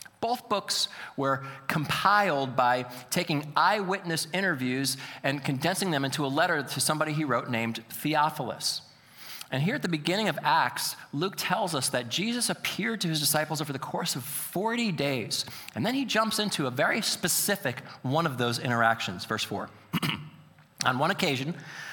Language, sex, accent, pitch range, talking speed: English, male, American, 125-180 Hz, 160 wpm